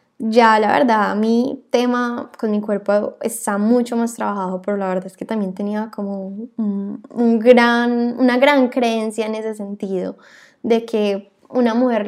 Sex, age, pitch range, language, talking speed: female, 10-29, 210-250 Hz, Spanish, 165 wpm